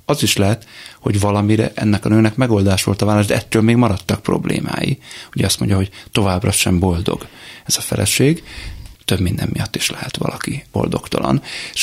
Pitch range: 95-120 Hz